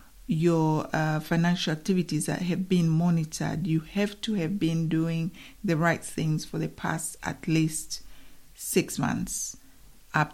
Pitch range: 155-185 Hz